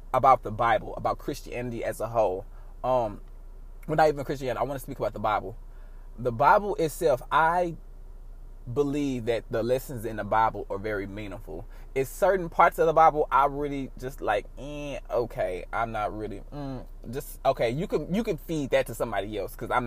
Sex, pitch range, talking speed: male, 125-175 Hz, 185 wpm